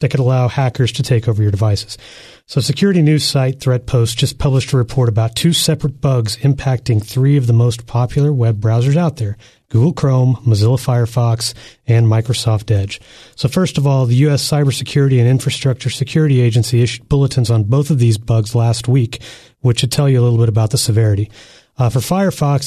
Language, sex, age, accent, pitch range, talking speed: English, male, 30-49, American, 115-135 Hz, 190 wpm